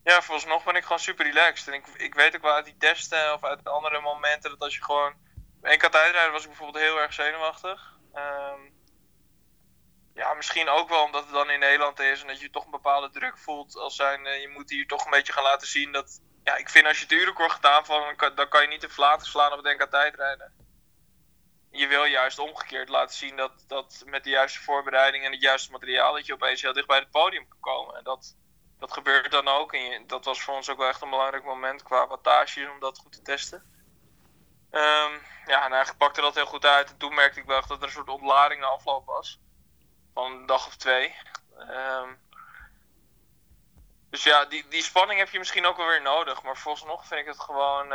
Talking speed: 230 wpm